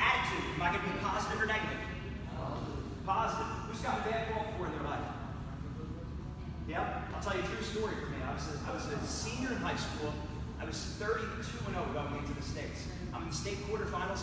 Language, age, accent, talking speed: English, 30-49, American, 210 wpm